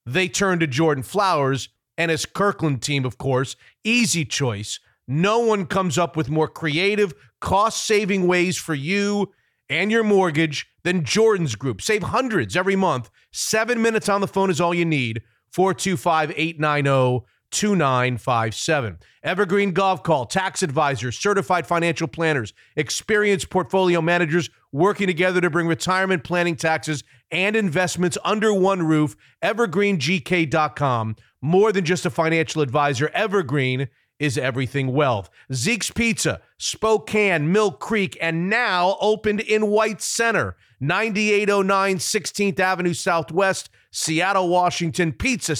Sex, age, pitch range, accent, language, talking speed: male, 40-59, 150-195 Hz, American, English, 125 wpm